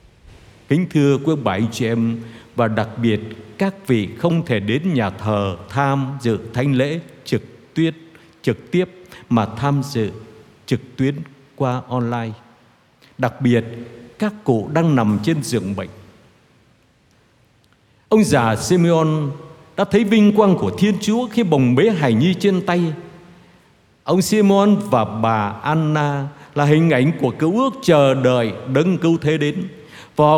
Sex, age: male, 60-79